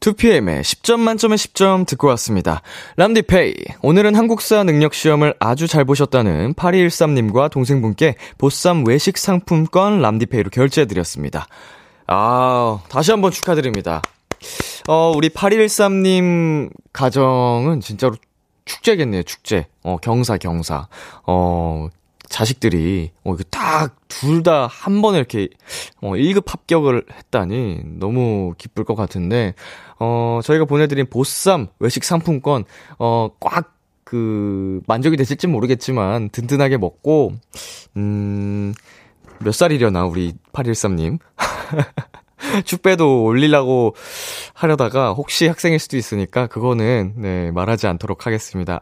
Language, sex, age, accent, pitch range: Korean, male, 20-39, native, 105-165 Hz